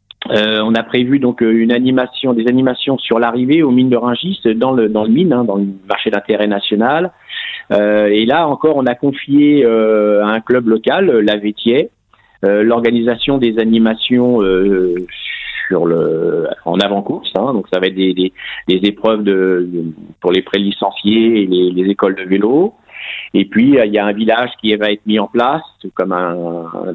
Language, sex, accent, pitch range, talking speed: French, male, French, 105-130 Hz, 185 wpm